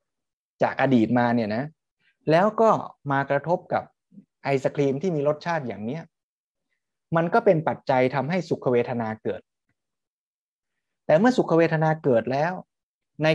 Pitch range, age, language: 120-160 Hz, 20-39, Thai